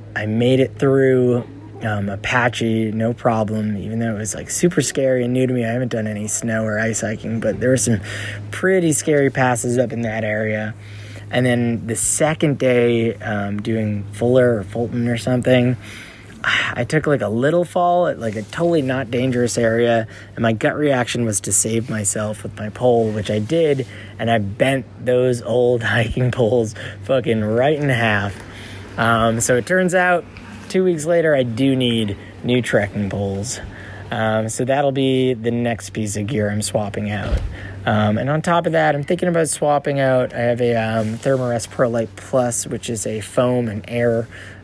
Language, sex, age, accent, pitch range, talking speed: English, male, 20-39, American, 105-130 Hz, 190 wpm